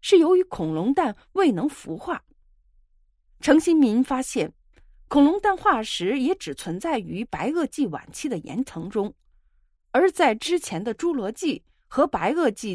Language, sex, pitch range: Chinese, female, 190-310 Hz